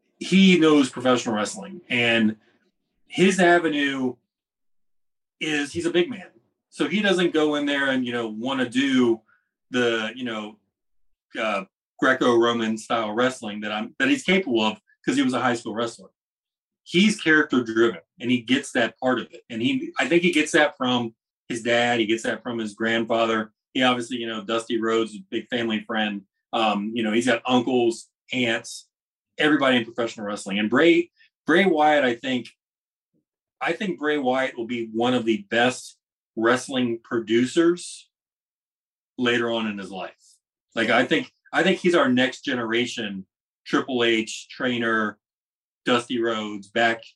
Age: 30-49